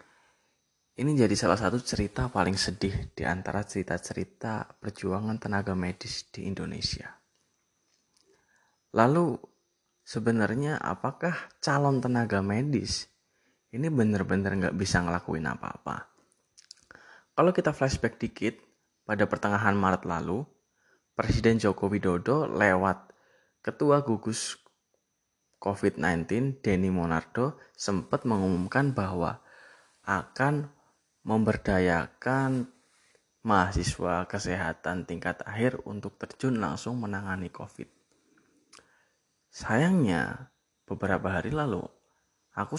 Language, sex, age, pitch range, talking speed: Indonesian, male, 20-39, 95-125 Hz, 85 wpm